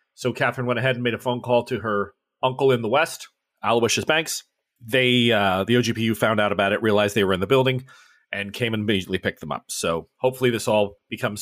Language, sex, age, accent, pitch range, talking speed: English, male, 30-49, American, 105-135 Hz, 225 wpm